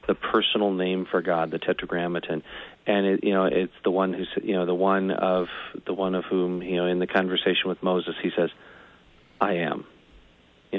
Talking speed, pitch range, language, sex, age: 200 wpm, 90-110 Hz, English, male, 40-59